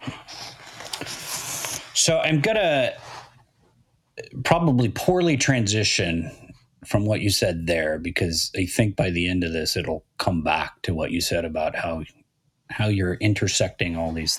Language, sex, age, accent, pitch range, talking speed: English, male, 30-49, American, 95-130 Hz, 140 wpm